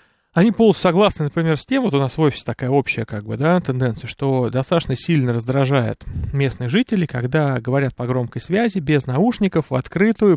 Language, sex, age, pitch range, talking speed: Russian, male, 30-49, 125-160 Hz, 185 wpm